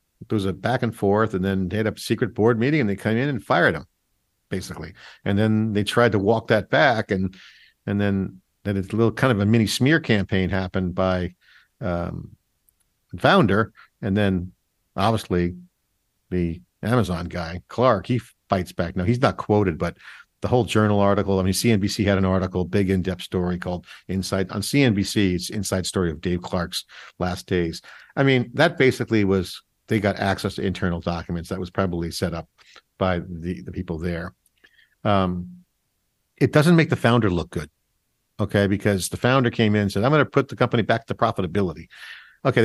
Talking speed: 190 wpm